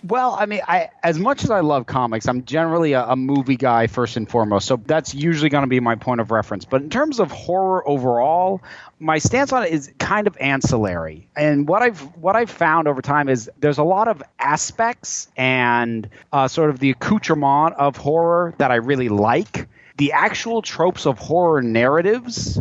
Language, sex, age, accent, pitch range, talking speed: English, male, 30-49, American, 120-155 Hz, 200 wpm